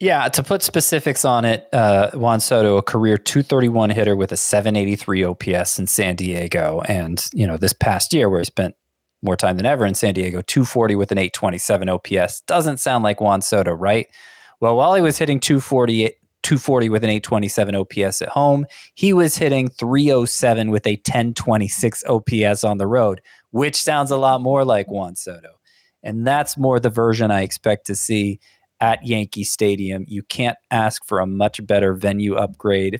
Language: English